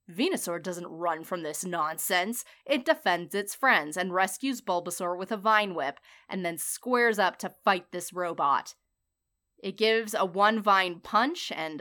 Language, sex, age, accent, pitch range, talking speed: English, female, 20-39, American, 175-230 Hz, 165 wpm